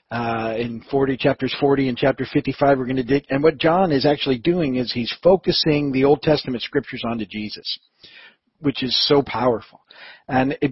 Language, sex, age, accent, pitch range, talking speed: English, male, 50-69, American, 125-145 Hz, 185 wpm